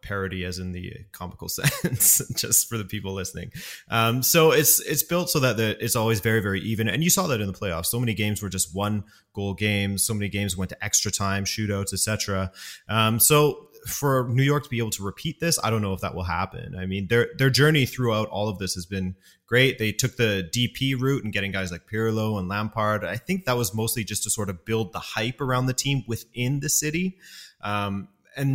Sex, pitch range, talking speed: male, 100-125 Hz, 235 wpm